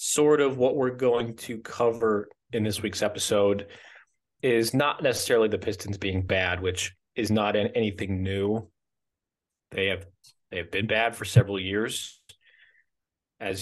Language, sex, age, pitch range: English, male, 30-49, 95-125 Hz